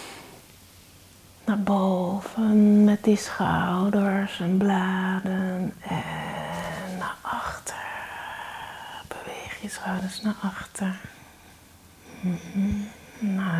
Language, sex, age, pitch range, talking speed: Dutch, female, 30-49, 165-205 Hz, 70 wpm